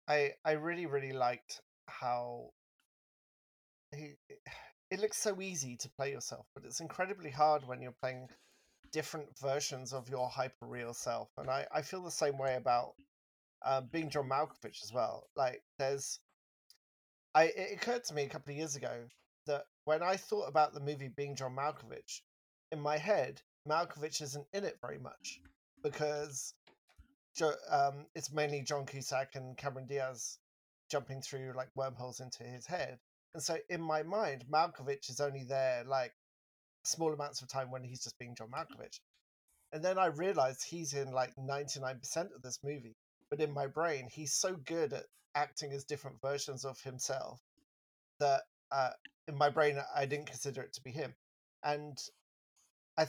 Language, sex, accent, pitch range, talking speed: English, male, British, 130-160 Hz, 165 wpm